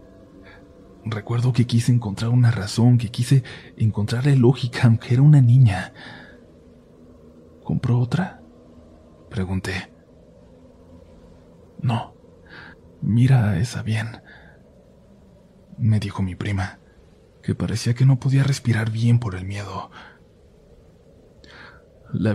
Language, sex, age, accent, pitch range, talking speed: Spanish, male, 40-59, Mexican, 95-125 Hz, 100 wpm